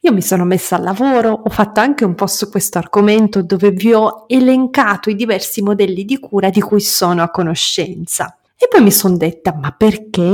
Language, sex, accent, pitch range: Italian, female, native, 185-240 Hz